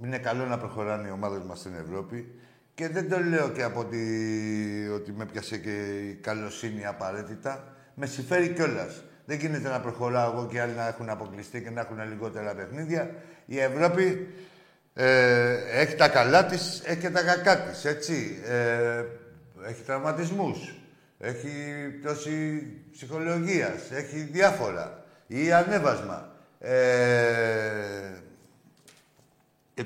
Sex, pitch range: male, 115-165 Hz